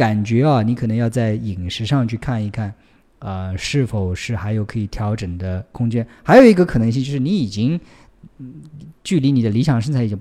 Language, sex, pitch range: Chinese, male, 105-130 Hz